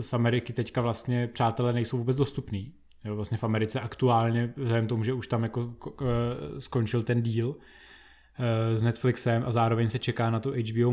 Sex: male